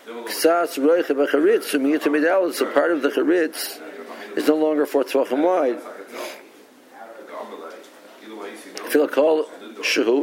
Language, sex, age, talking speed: English, male, 60-79, 60 wpm